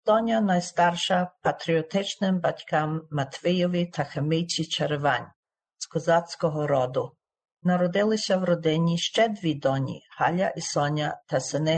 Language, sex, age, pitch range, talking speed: Ukrainian, female, 50-69, 150-180 Hz, 115 wpm